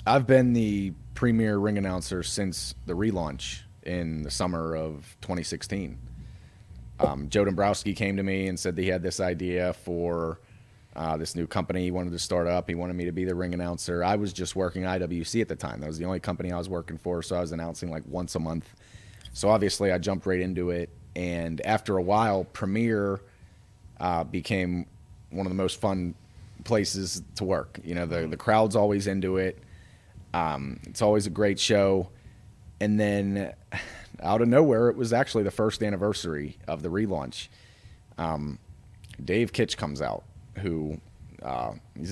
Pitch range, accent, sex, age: 85-105 Hz, American, male, 30-49